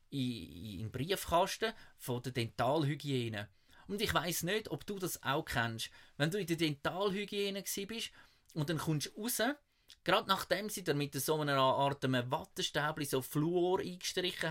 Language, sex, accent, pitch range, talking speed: German, male, Austrian, 130-180 Hz, 155 wpm